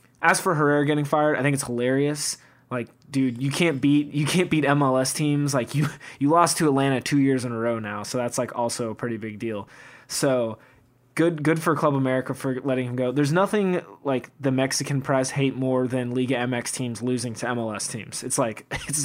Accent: American